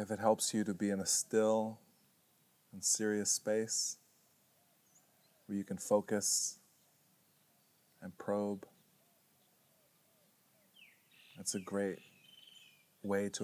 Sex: male